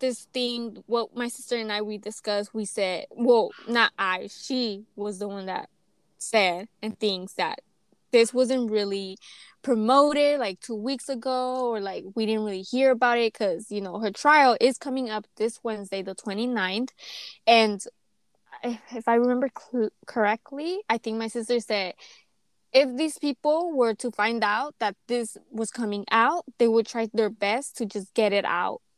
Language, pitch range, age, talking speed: English, 205-245 Hz, 20-39, 175 wpm